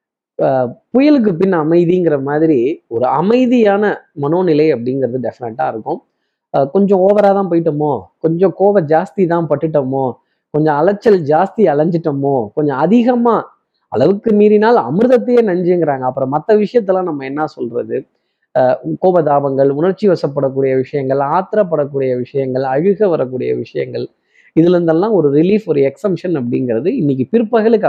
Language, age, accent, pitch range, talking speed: Tamil, 20-39, native, 140-210 Hz, 110 wpm